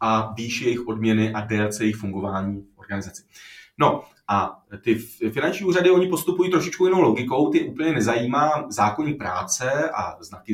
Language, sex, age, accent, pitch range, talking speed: Czech, male, 30-49, native, 110-145 Hz, 150 wpm